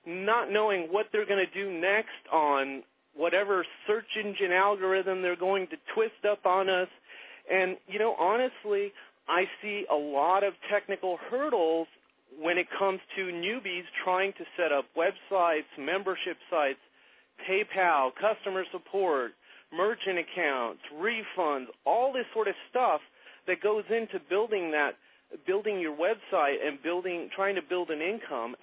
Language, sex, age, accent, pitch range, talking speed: English, male, 40-59, American, 170-220 Hz, 145 wpm